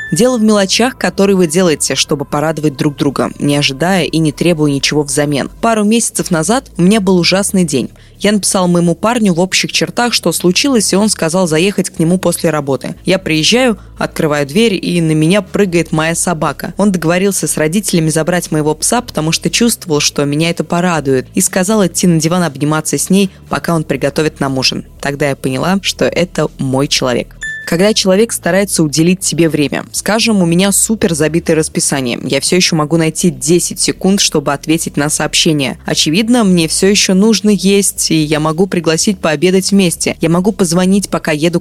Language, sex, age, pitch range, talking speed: Russian, female, 20-39, 155-200 Hz, 180 wpm